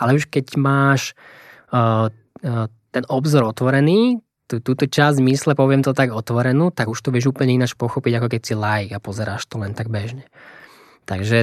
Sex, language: male, Slovak